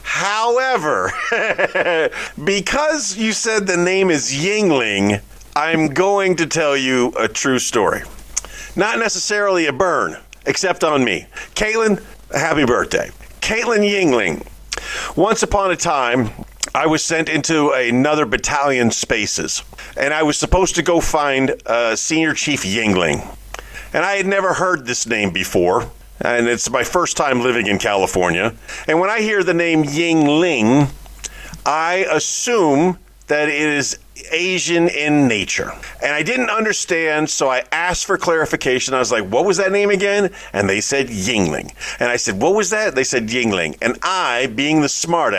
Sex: male